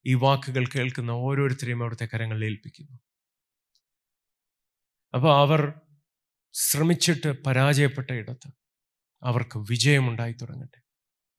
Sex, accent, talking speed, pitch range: male, native, 70 wpm, 125-145 Hz